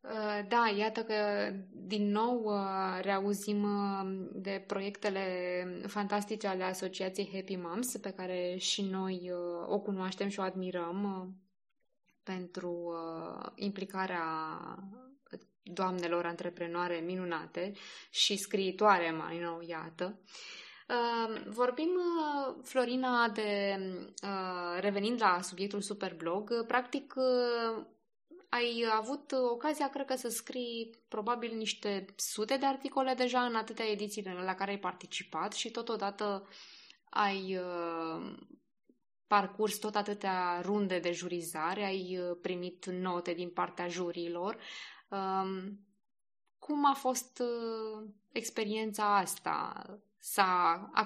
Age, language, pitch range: 20-39, Romanian, 180-225 Hz